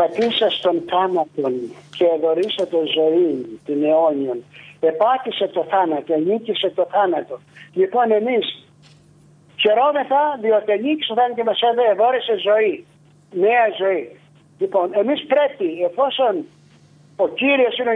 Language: Greek